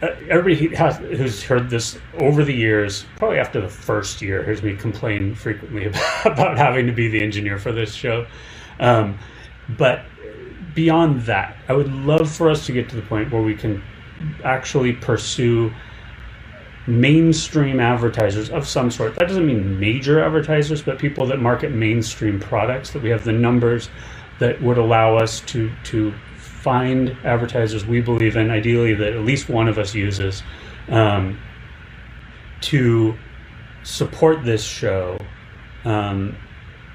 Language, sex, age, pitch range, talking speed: English, male, 30-49, 105-125 Hz, 150 wpm